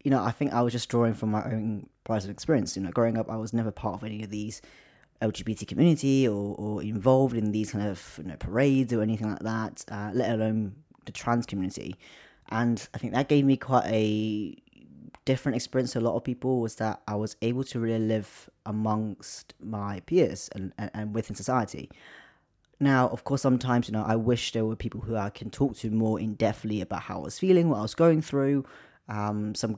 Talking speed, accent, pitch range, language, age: 220 wpm, British, 105-120 Hz, English, 20-39